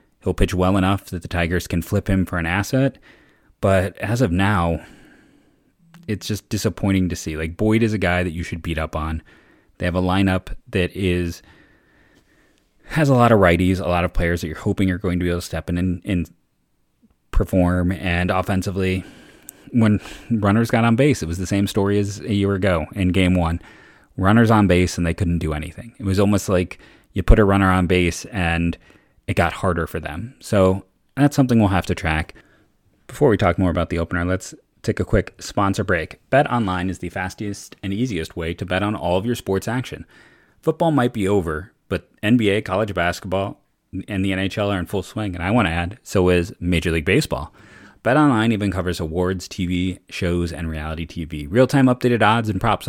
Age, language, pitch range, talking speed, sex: 30-49, English, 90-105 Hz, 205 wpm, male